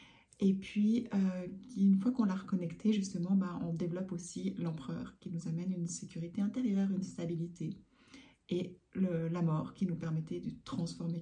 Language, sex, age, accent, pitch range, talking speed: French, female, 40-59, French, 175-200 Hz, 160 wpm